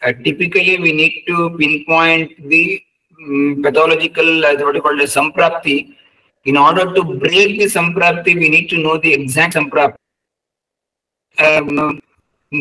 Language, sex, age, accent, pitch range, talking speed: English, male, 50-69, Indian, 155-190 Hz, 145 wpm